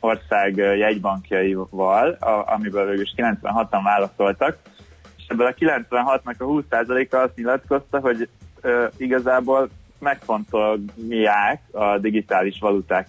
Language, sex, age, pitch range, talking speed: Hungarian, male, 20-39, 95-115 Hz, 95 wpm